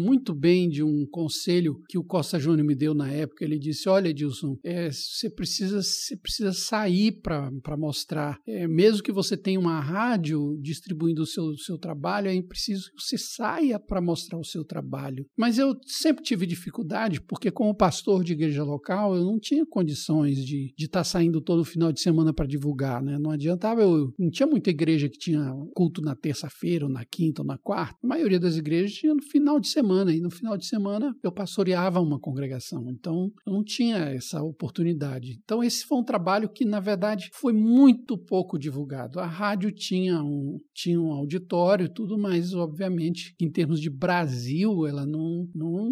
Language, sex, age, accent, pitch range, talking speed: Portuguese, male, 60-79, Brazilian, 155-205 Hz, 195 wpm